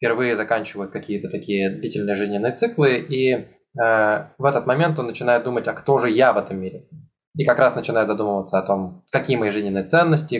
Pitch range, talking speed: 110-150 Hz, 190 wpm